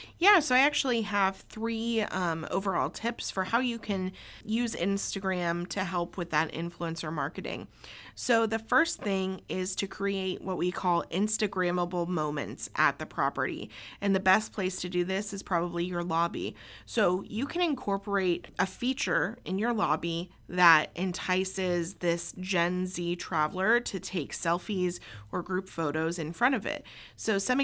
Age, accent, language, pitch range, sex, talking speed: 30-49, American, English, 170-200 Hz, female, 160 wpm